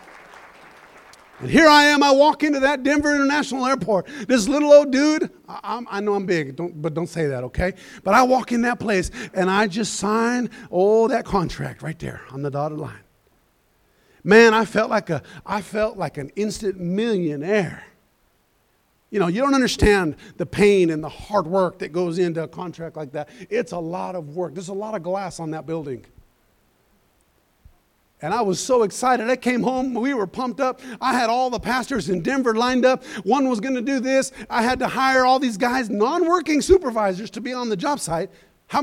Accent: American